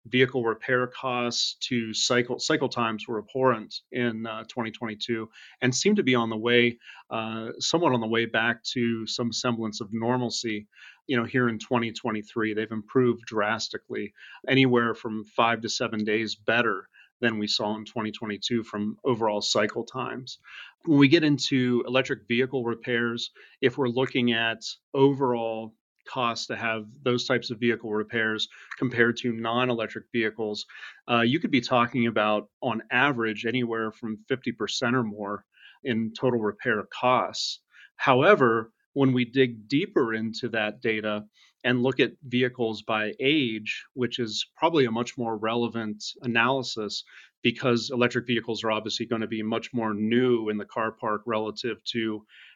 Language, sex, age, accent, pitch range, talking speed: English, male, 30-49, American, 110-125 Hz, 155 wpm